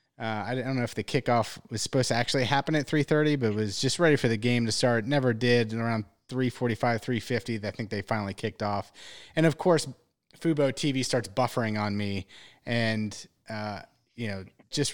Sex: male